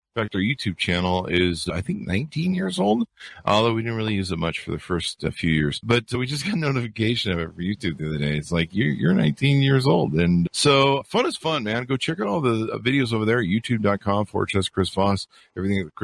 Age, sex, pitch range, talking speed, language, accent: 50-69, male, 85-115 Hz, 245 wpm, English, American